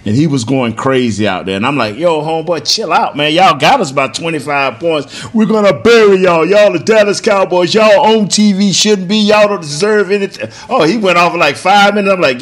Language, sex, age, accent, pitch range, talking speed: English, male, 40-59, American, 125-195 Hz, 230 wpm